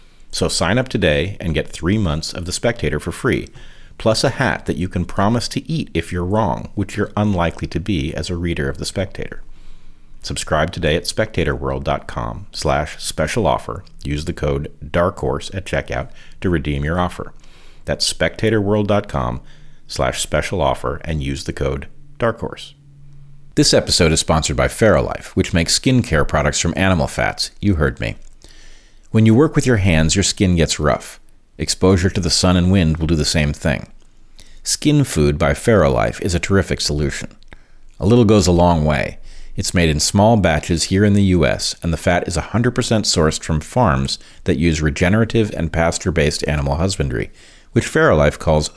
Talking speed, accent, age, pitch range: 170 wpm, American, 40-59, 75-105 Hz